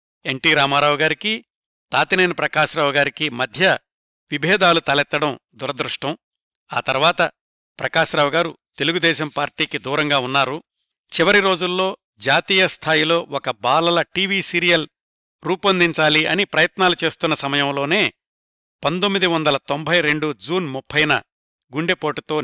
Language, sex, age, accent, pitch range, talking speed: Telugu, male, 60-79, native, 140-170 Hz, 100 wpm